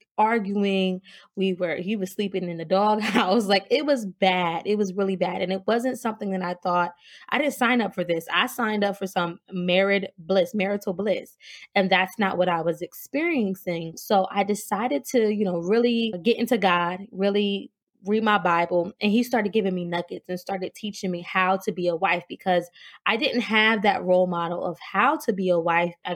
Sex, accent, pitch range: female, American, 180-215 Hz